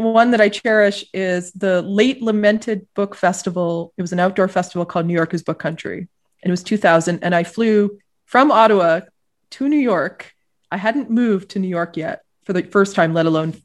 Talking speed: 200 wpm